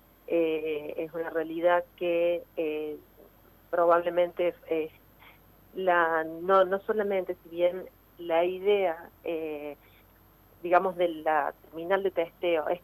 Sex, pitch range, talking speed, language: female, 160-180 Hz, 110 wpm, Spanish